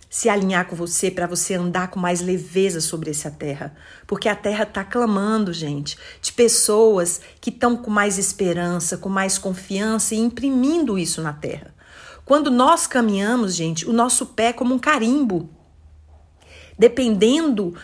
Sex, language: female, Portuguese